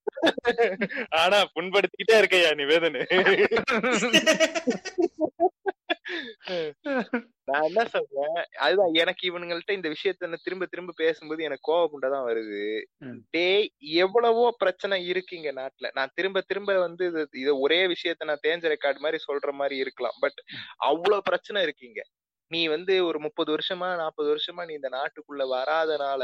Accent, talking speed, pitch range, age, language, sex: native, 125 wpm, 155-220 Hz, 20-39, Tamil, male